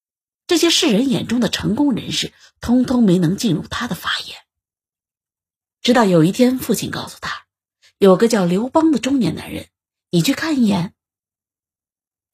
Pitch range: 170-245 Hz